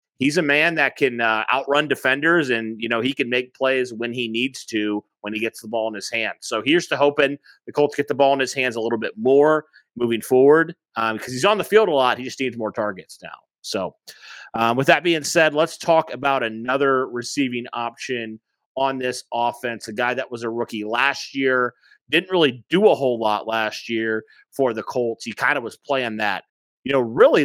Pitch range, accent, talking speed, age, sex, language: 115-140 Hz, American, 225 wpm, 30-49, male, English